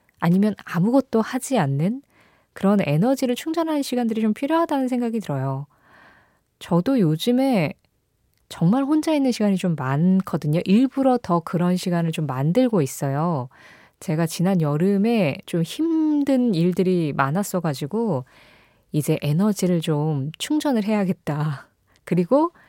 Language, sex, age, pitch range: Korean, female, 20-39, 155-245 Hz